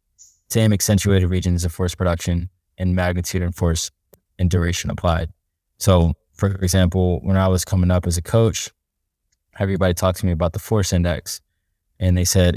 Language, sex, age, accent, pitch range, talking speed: English, male, 20-39, American, 85-100 Hz, 165 wpm